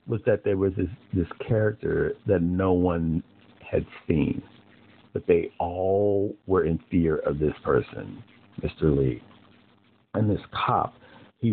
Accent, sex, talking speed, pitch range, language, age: American, male, 140 wpm, 85-110 Hz, English, 50-69